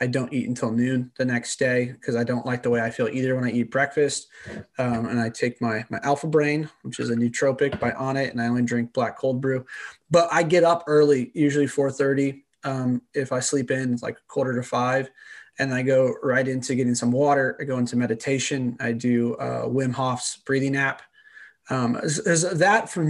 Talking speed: 220 wpm